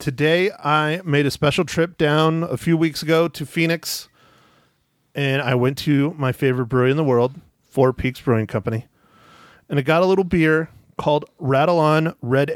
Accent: American